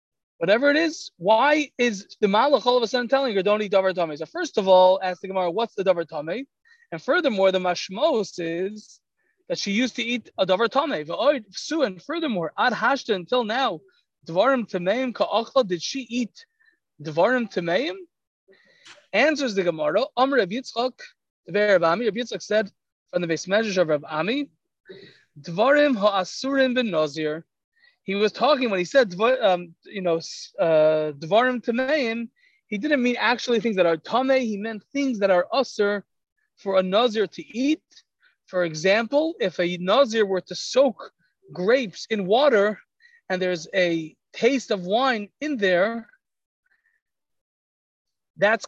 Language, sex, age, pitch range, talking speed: English, male, 20-39, 190-270 Hz, 150 wpm